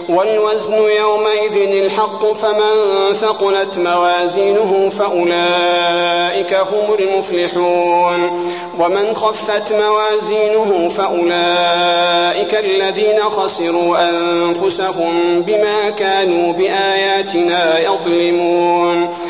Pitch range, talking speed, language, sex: 175-210 Hz, 60 wpm, Arabic, male